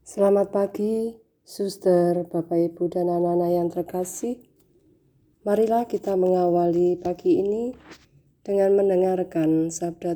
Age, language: 20-39, Indonesian